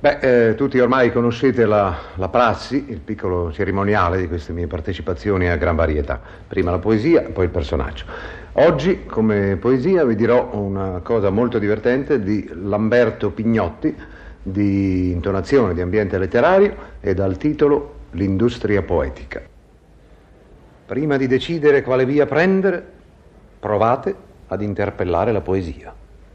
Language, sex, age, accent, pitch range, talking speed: Italian, male, 50-69, native, 95-150 Hz, 130 wpm